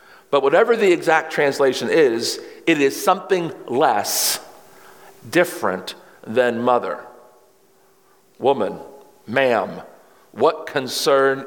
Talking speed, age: 90 wpm, 50-69